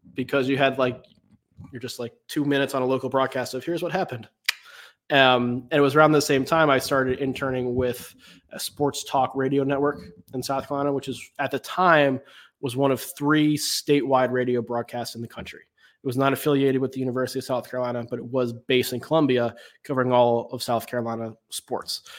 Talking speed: 200 wpm